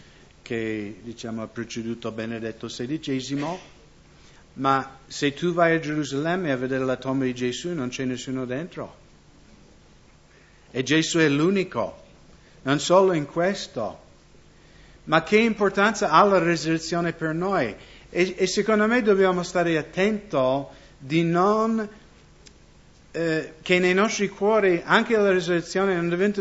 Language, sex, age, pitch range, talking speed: English, male, 50-69, 130-175 Hz, 125 wpm